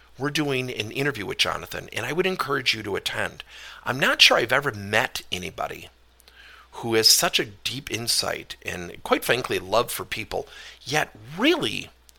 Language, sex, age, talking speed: English, male, 50-69, 165 wpm